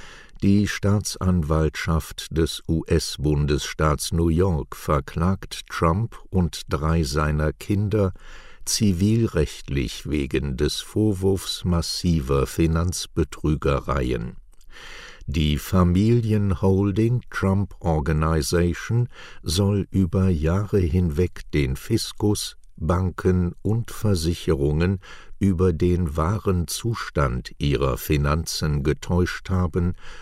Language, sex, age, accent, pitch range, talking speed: German, male, 60-79, German, 80-95 Hz, 75 wpm